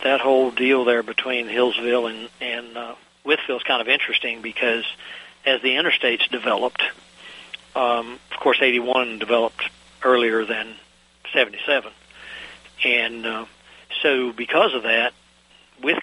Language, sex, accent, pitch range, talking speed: English, male, American, 115-125 Hz, 125 wpm